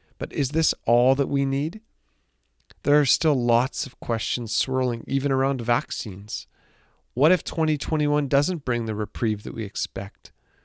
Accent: American